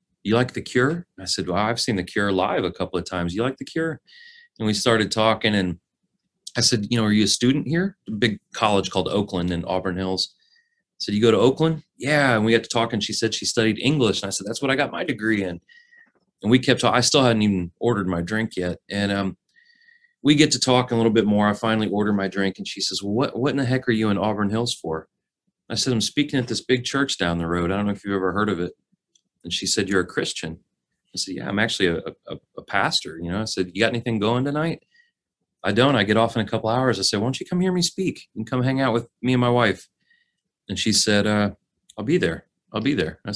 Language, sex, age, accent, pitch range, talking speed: English, male, 30-49, American, 100-130 Hz, 270 wpm